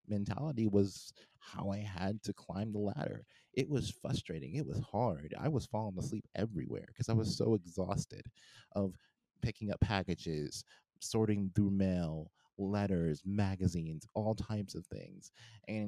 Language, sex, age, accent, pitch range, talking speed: English, male, 30-49, American, 95-120 Hz, 145 wpm